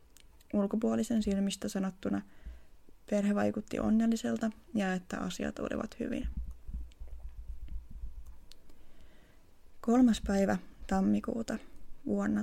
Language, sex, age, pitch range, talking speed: Finnish, female, 20-39, 195-230 Hz, 70 wpm